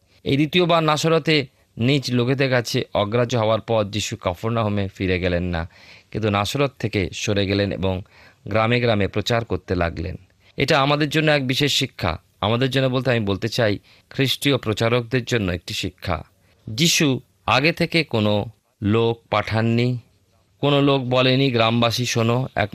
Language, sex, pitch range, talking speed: Bengali, male, 95-120 Hz, 145 wpm